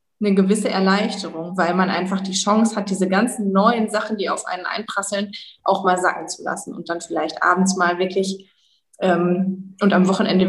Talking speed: 185 wpm